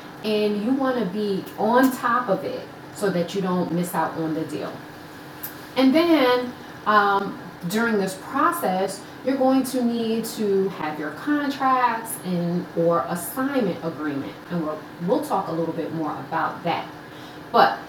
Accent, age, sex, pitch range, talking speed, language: American, 30-49, female, 165-225 Hz, 155 wpm, English